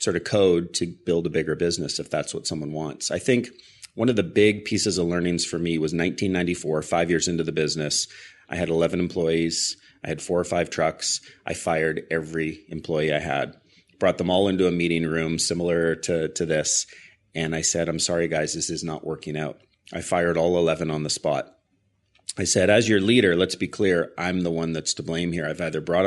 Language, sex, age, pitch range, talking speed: English, male, 30-49, 80-95 Hz, 215 wpm